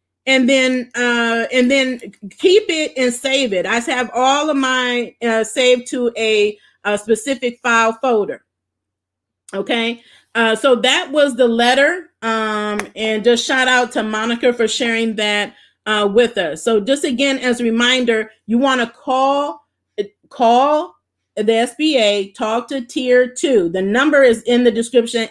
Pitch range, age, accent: 220-270 Hz, 40-59, American